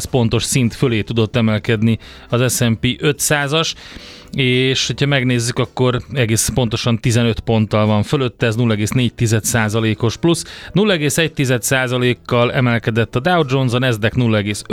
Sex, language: male, Hungarian